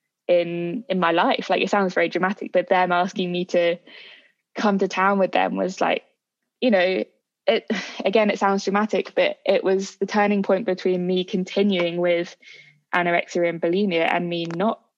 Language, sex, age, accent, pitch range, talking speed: English, female, 20-39, British, 175-210 Hz, 175 wpm